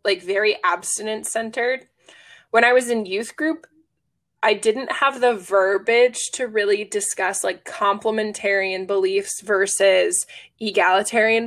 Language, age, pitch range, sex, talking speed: English, 20-39, 195-235 Hz, female, 120 wpm